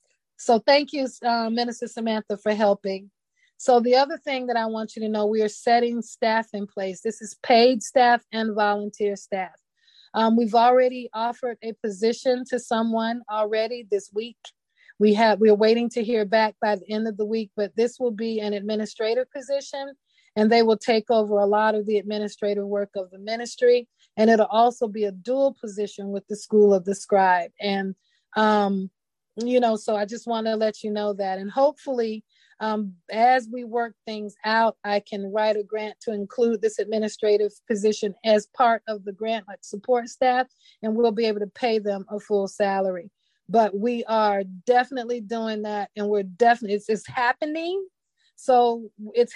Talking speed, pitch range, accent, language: 185 wpm, 210-235 Hz, American, English